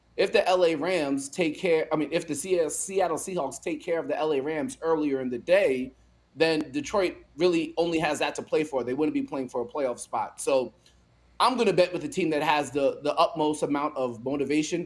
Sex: male